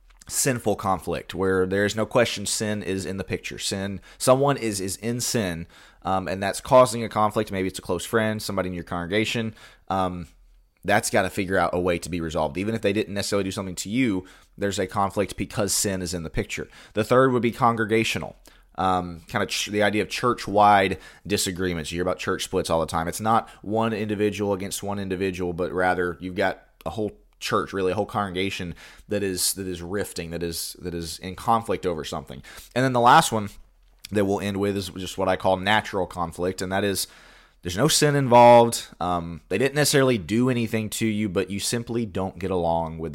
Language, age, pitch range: English, 20-39, 90-110 Hz